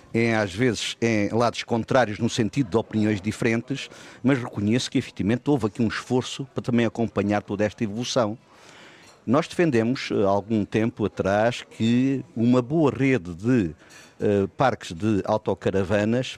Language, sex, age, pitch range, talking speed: Portuguese, male, 50-69, 100-125 Hz, 140 wpm